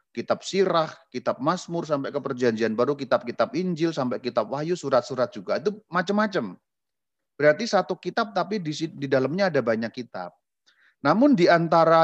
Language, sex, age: Indonesian, male, 40-59